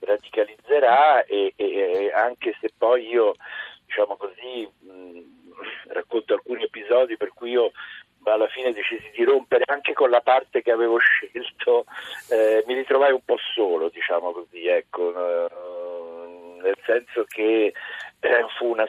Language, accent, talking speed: Italian, native, 135 wpm